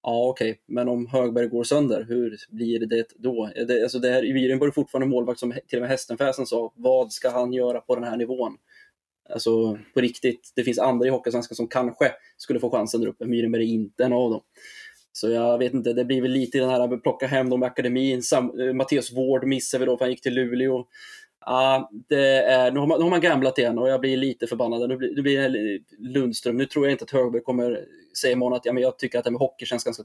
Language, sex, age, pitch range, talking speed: Swedish, male, 20-39, 120-130 Hz, 260 wpm